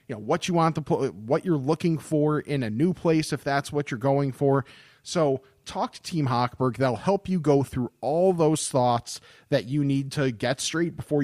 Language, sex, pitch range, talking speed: English, male, 125-165 Hz, 215 wpm